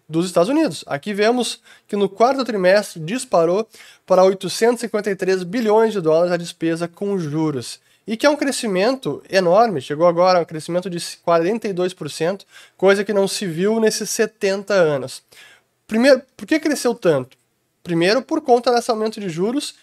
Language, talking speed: Portuguese, 155 wpm